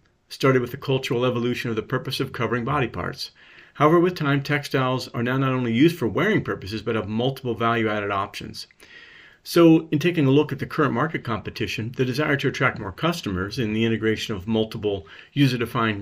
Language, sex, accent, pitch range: English, male, American, 115-140 Hz